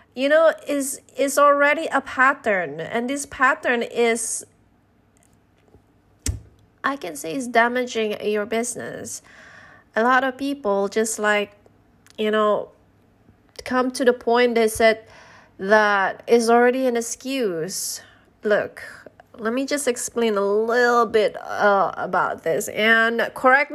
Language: English